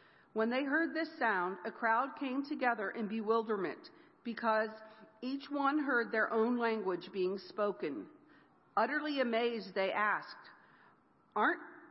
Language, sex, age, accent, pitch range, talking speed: English, female, 50-69, American, 210-270 Hz, 120 wpm